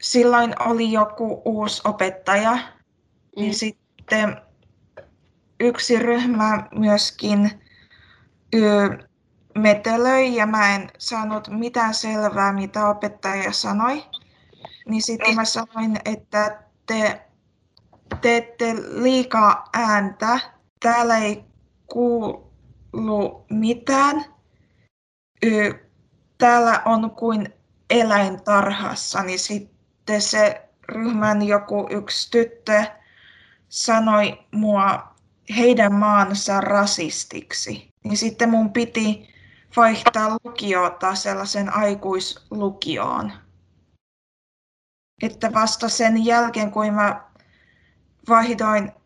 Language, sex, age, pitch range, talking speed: Finnish, female, 20-39, 200-230 Hz, 80 wpm